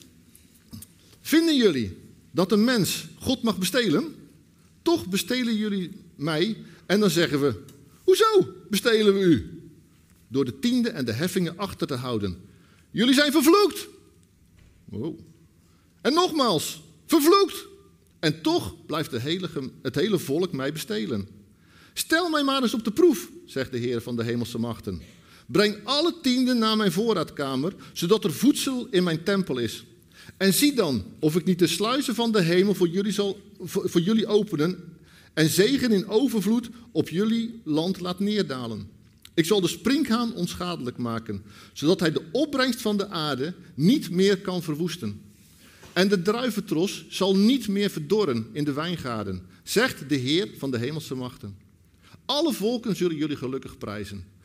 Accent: Dutch